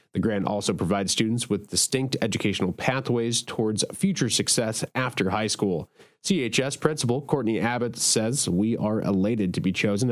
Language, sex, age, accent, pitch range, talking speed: English, male, 30-49, American, 95-120 Hz, 155 wpm